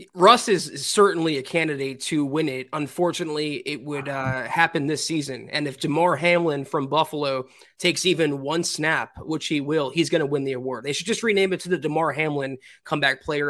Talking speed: 200 wpm